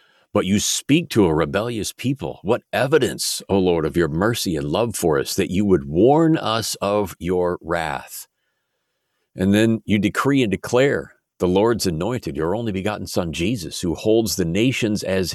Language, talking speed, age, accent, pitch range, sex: English, 175 wpm, 50-69, American, 90-110 Hz, male